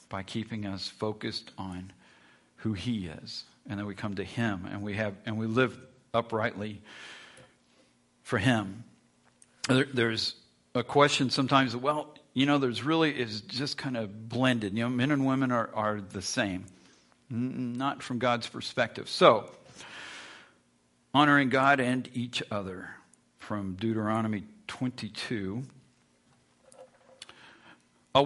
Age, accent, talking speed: 50-69, American, 125 wpm